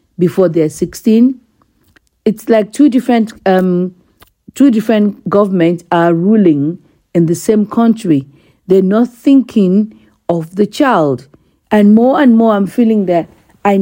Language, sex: English, female